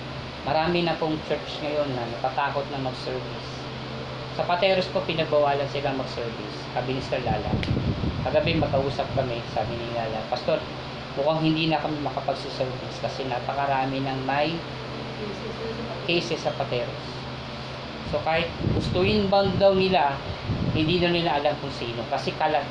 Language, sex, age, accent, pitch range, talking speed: Filipino, female, 20-39, native, 135-180 Hz, 135 wpm